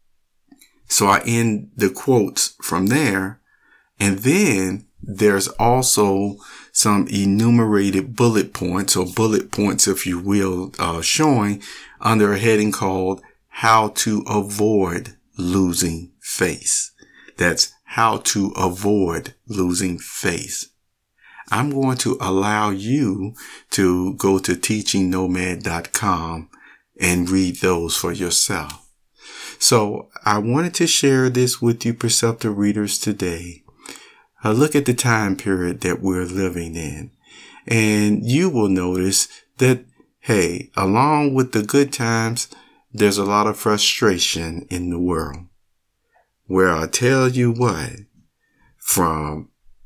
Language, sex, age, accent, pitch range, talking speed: English, male, 50-69, American, 95-115 Hz, 120 wpm